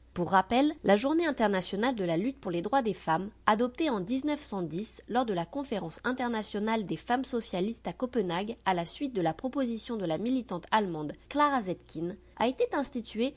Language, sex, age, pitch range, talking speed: French, female, 20-39, 180-260 Hz, 185 wpm